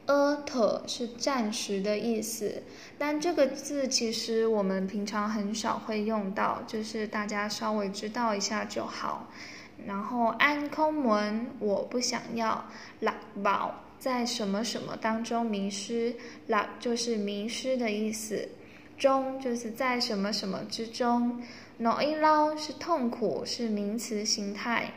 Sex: female